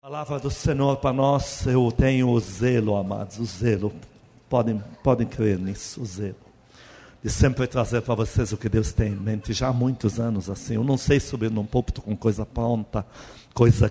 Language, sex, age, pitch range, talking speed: Portuguese, male, 50-69, 110-140 Hz, 195 wpm